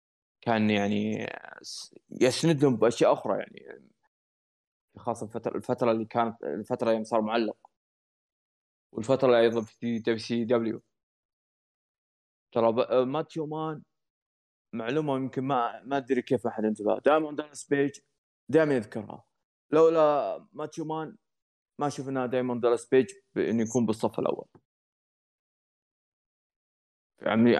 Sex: male